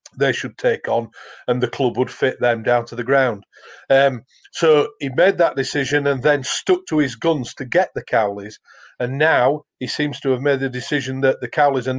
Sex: male